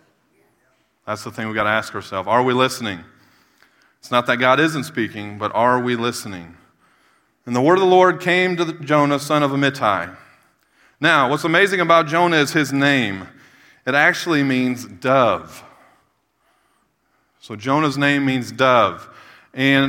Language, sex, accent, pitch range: English, male, American, 120-145 Hz